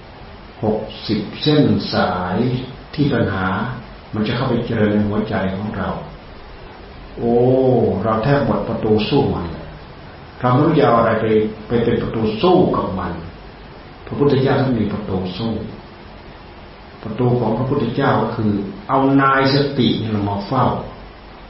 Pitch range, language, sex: 105-130 Hz, Thai, male